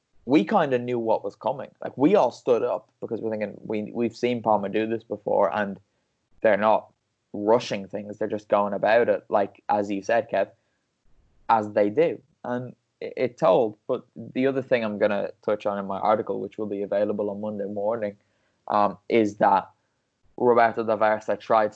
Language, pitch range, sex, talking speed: English, 105-120 Hz, male, 190 wpm